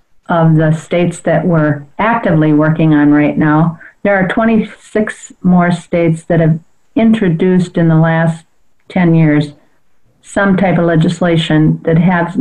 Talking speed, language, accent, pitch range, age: 140 wpm, English, American, 160-185 Hz, 50-69